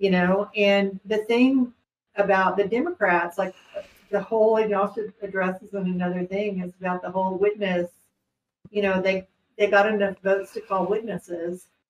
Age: 50-69